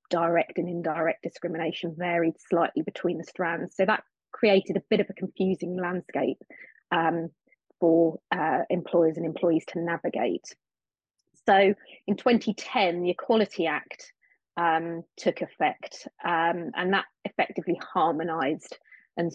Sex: female